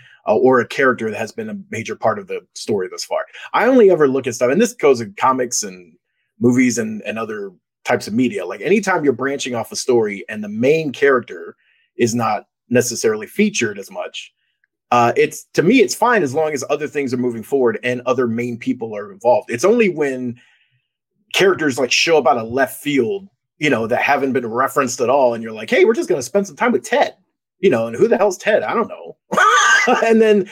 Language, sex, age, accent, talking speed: English, male, 30-49, American, 225 wpm